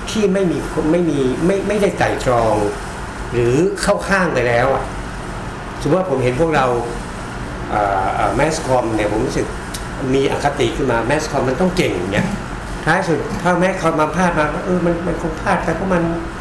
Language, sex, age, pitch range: Thai, male, 60-79, 120-165 Hz